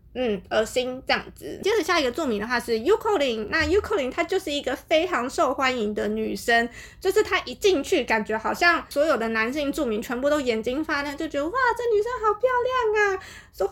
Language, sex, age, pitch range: Chinese, female, 20-39, 235-360 Hz